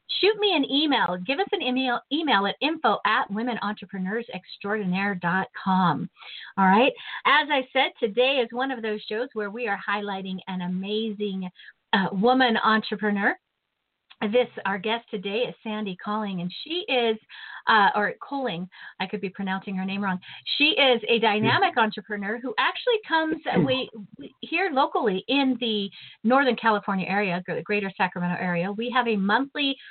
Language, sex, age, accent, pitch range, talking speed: English, female, 40-59, American, 195-250 Hz, 155 wpm